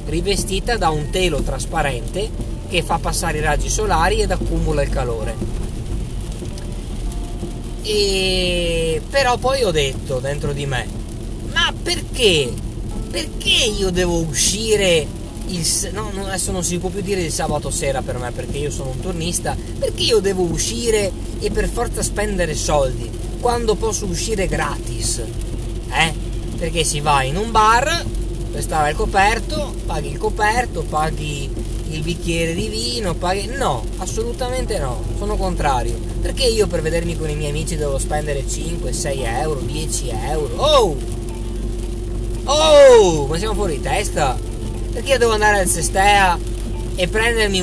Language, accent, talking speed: Italian, native, 140 wpm